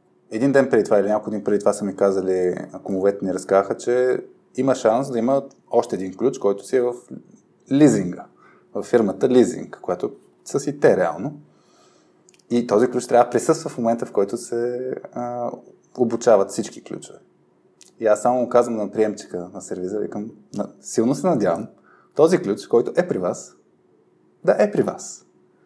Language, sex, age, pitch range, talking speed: Bulgarian, male, 20-39, 105-140 Hz, 170 wpm